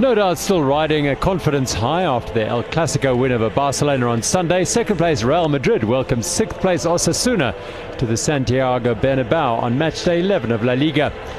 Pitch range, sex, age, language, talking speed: 130-180 Hz, male, 50-69, English, 185 wpm